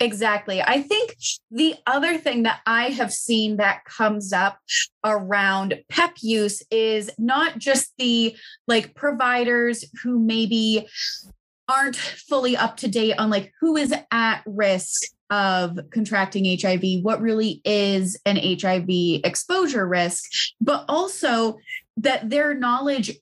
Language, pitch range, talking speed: English, 200-250 Hz, 130 wpm